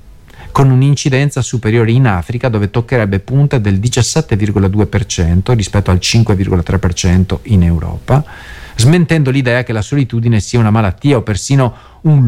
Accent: native